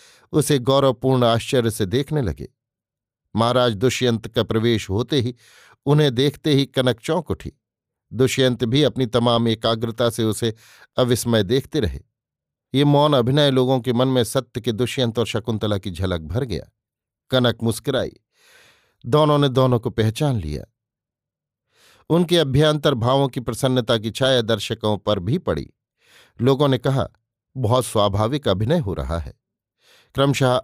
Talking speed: 145 wpm